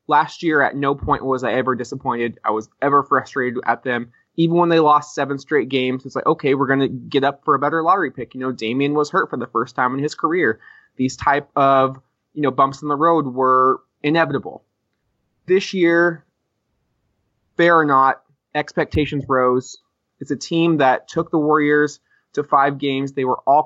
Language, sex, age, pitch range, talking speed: English, male, 20-39, 130-150 Hz, 200 wpm